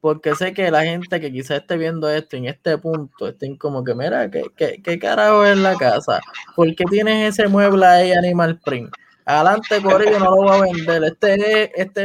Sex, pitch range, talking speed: male, 155-190 Hz, 210 wpm